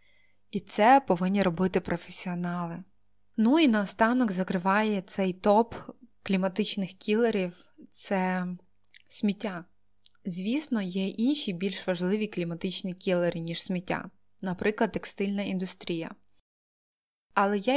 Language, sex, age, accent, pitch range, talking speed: Ukrainian, female, 20-39, native, 180-220 Hz, 100 wpm